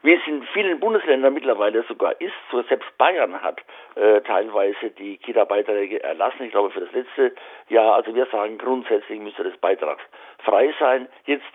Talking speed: 170 wpm